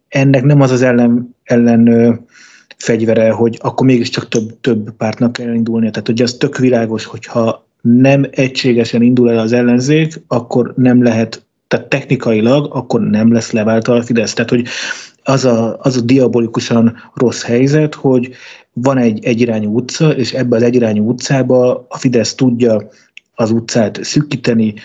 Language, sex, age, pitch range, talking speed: Hungarian, male, 30-49, 115-130 Hz, 155 wpm